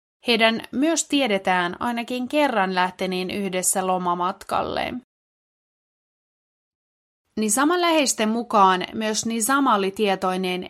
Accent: native